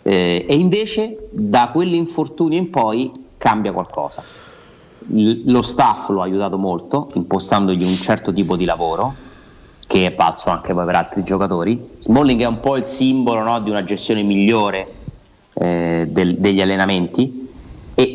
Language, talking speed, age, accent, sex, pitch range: Italian, 150 wpm, 30-49, native, male, 100-130 Hz